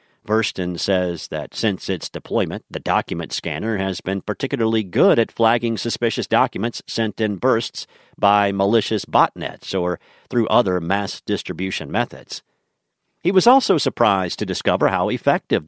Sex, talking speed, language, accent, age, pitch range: male, 140 wpm, English, American, 50-69, 95-130 Hz